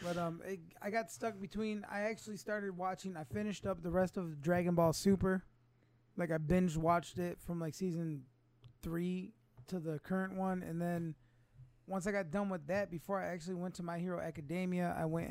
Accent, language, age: American, English, 20-39